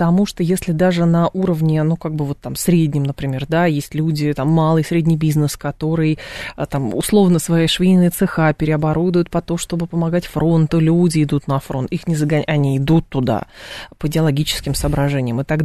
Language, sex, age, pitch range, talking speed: Russian, female, 20-39, 160-190 Hz, 180 wpm